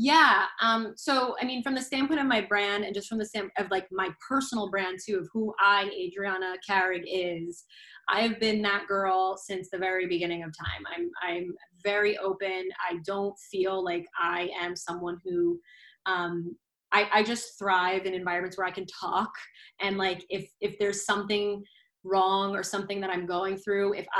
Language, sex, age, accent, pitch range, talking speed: English, female, 20-39, American, 185-210 Hz, 195 wpm